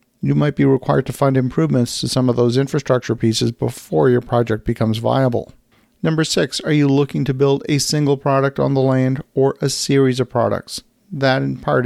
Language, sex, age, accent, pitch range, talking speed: English, male, 50-69, American, 120-140 Hz, 195 wpm